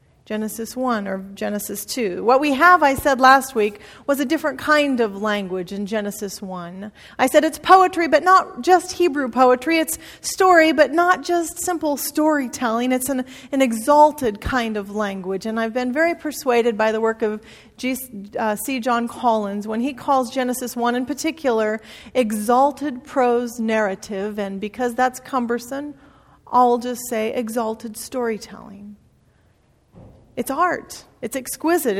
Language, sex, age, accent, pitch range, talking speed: English, female, 40-59, American, 215-280 Hz, 150 wpm